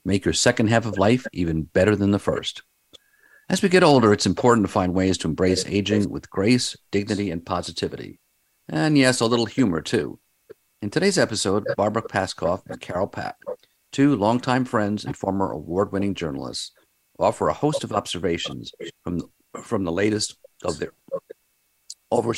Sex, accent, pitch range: male, American, 100-140 Hz